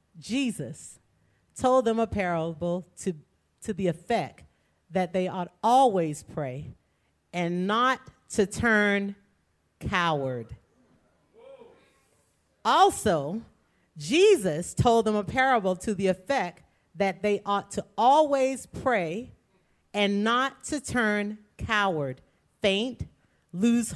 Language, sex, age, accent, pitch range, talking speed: English, female, 40-59, American, 145-220 Hz, 105 wpm